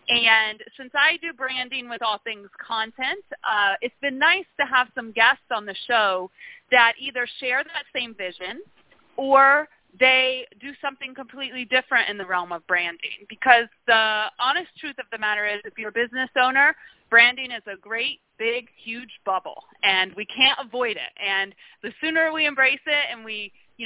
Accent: American